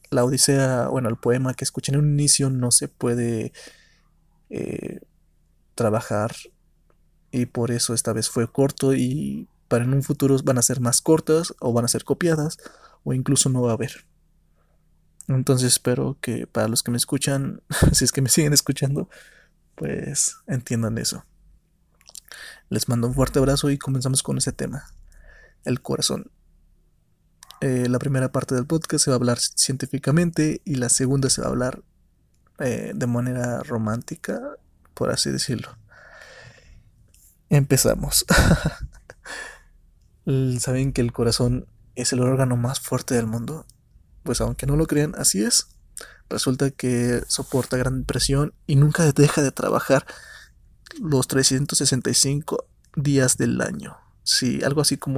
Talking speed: 145 wpm